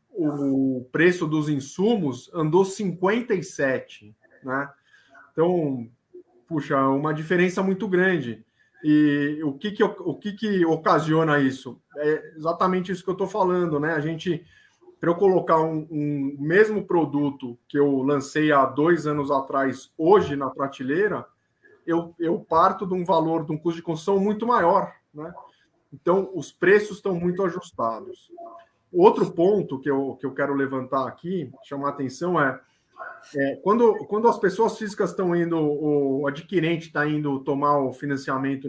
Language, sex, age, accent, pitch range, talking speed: Portuguese, male, 20-39, Brazilian, 140-195 Hz, 150 wpm